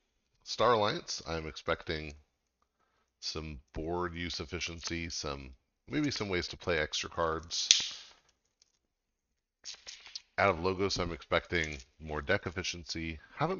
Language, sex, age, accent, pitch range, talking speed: English, male, 40-59, American, 80-95 Hz, 110 wpm